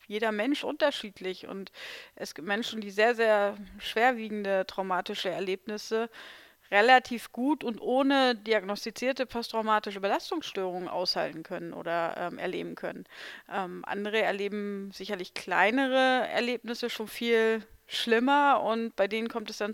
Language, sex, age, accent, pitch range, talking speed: German, female, 30-49, German, 185-230 Hz, 125 wpm